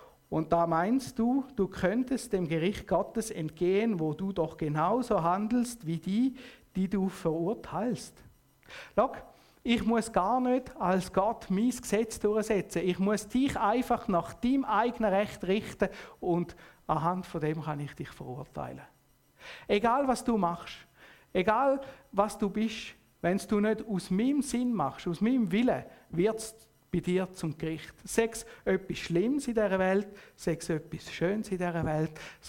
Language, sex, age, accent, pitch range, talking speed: German, male, 50-69, Austrian, 165-215 Hz, 155 wpm